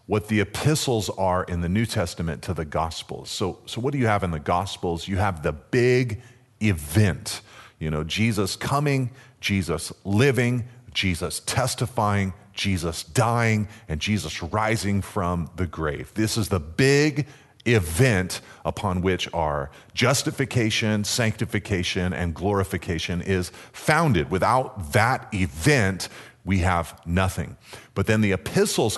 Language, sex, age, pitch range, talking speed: English, male, 40-59, 95-125 Hz, 135 wpm